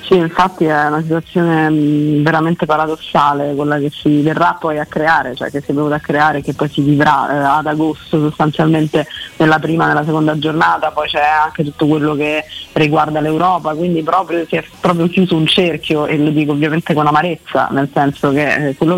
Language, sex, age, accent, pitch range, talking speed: Italian, female, 30-49, native, 150-170 Hz, 195 wpm